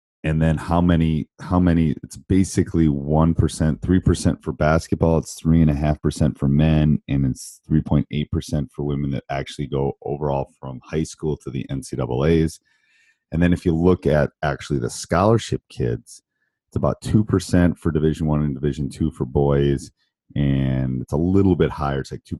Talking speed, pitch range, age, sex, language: 165 wpm, 70-85 Hz, 30-49, male, English